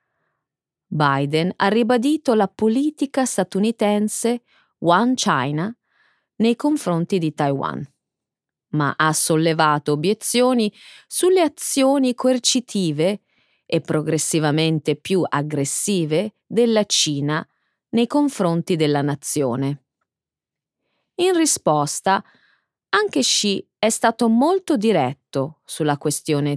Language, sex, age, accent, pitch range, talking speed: Italian, female, 30-49, native, 160-245 Hz, 90 wpm